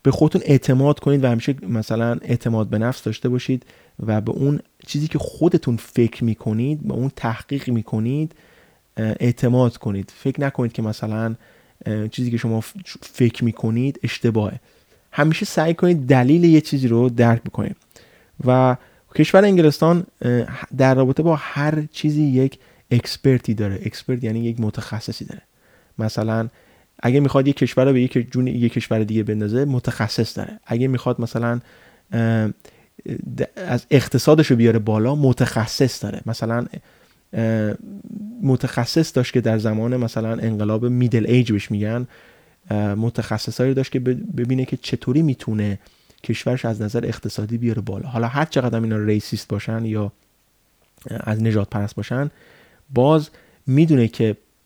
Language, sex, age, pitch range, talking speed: Persian, male, 30-49, 110-135 Hz, 140 wpm